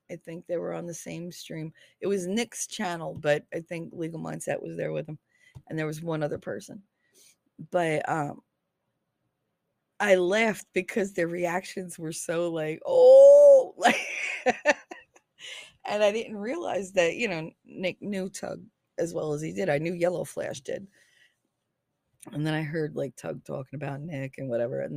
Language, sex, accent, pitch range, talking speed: English, female, American, 155-215 Hz, 170 wpm